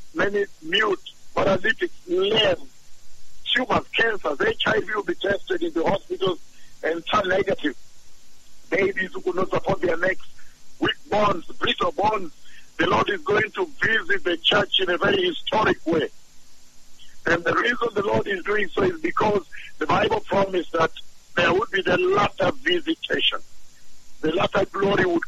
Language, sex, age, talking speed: English, male, 60-79, 150 wpm